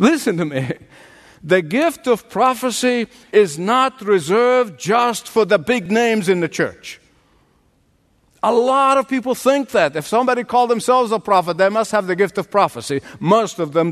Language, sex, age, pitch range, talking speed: English, male, 50-69, 205-255 Hz, 175 wpm